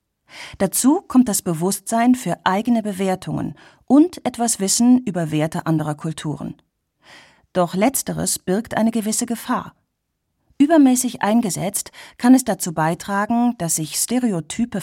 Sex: female